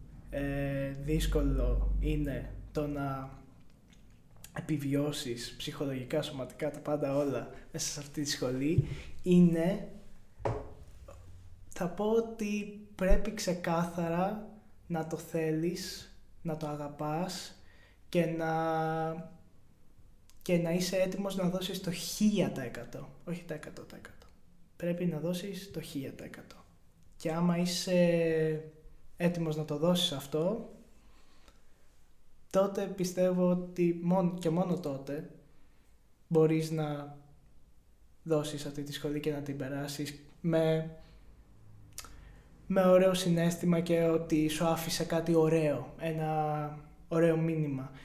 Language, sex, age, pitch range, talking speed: Greek, male, 20-39, 140-170 Hz, 105 wpm